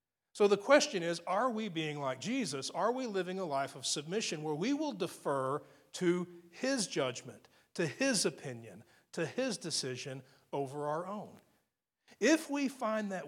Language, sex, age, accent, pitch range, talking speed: English, male, 40-59, American, 140-195 Hz, 165 wpm